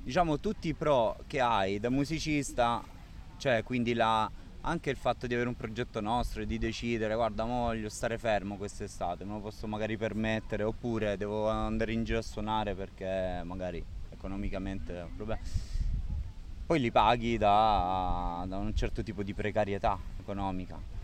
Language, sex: Italian, male